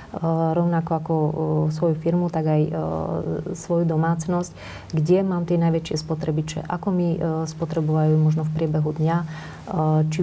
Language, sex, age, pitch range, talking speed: Slovak, female, 30-49, 155-175 Hz, 125 wpm